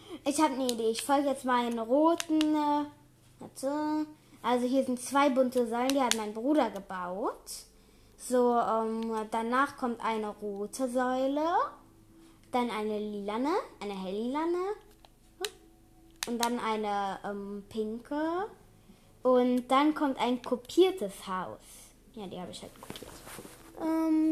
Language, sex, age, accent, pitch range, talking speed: German, female, 20-39, German, 230-310 Hz, 125 wpm